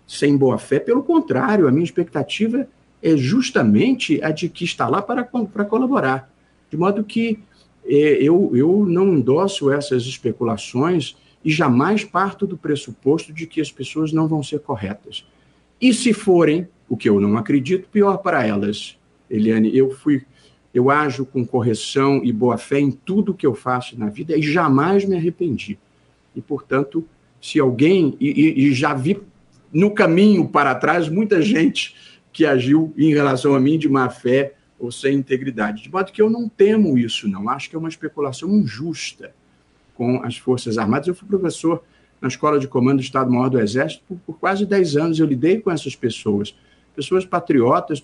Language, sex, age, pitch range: Portuguese, male, 50-69, 130-185 Hz